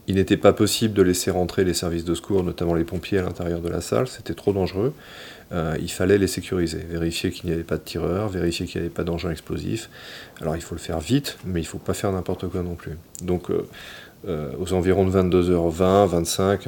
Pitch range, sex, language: 85-100 Hz, male, French